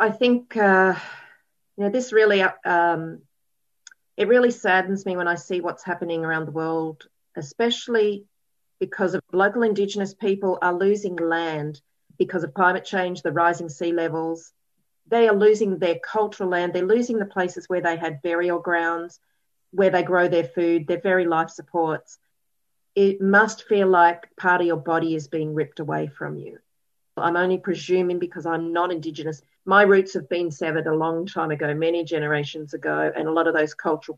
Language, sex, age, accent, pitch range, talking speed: English, female, 40-59, Australian, 165-190 Hz, 175 wpm